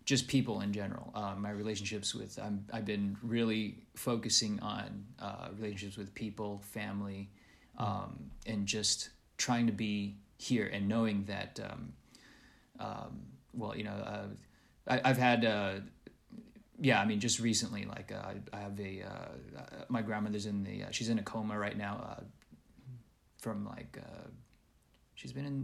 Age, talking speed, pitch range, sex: 30-49, 165 wpm, 105-120 Hz, male